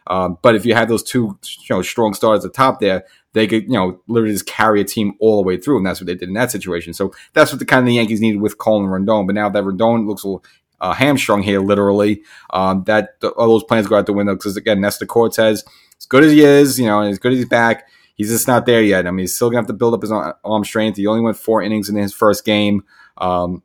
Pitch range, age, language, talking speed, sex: 100-115 Hz, 30-49, English, 290 wpm, male